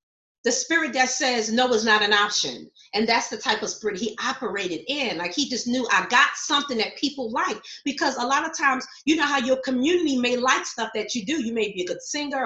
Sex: female